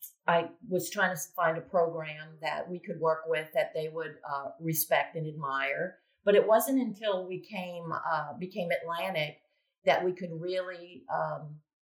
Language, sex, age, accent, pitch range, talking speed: English, female, 50-69, American, 165-200 Hz, 165 wpm